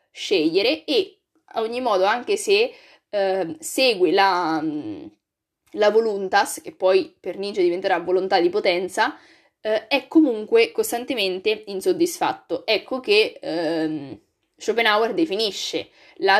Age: 20-39